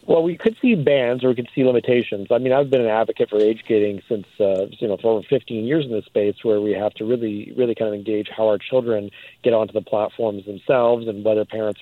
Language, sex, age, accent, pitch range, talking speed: English, male, 40-59, American, 105-130 Hz, 255 wpm